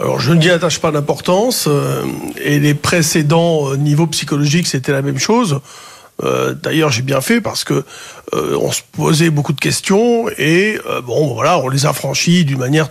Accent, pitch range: French, 150-195 Hz